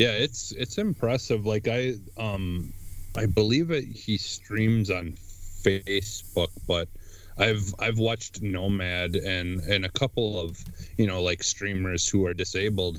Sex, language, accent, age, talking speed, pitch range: male, English, American, 30-49, 145 wpm, 90-105 Hz